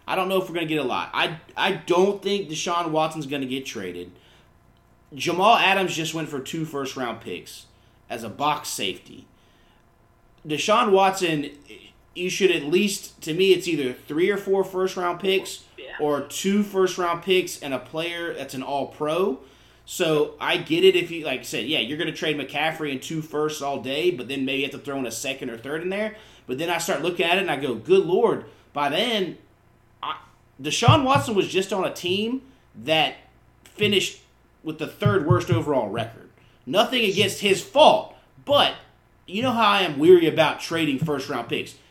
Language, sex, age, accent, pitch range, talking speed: English, male, 30-49, American, 135-195 Hz, 195 wpm